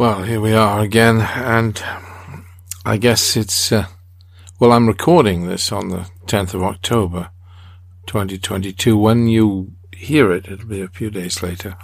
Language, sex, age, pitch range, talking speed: English, male, 50-69, 90-110 Hz, 150 wpm